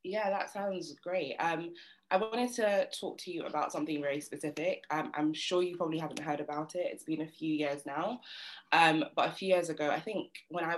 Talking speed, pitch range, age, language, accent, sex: 225 wpm, 150-180 Hz, 20-39, English, British, female